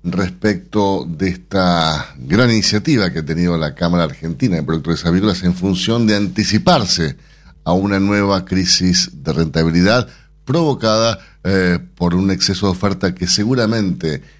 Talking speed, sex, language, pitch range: 140 wpm, male, Spanish, 85-110 Hz